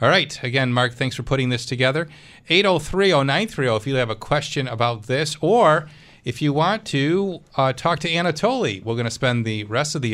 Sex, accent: male, American